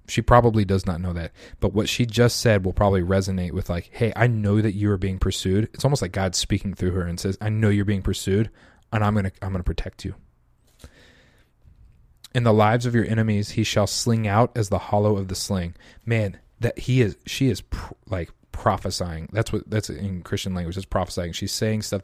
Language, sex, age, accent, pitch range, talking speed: English, male, 30-49, American, 95-115 Hz, 225 wpm